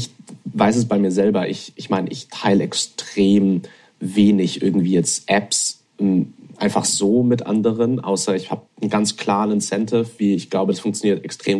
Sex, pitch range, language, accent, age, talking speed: male, 95-110 Hz, German, German, 30-49, 165 wpm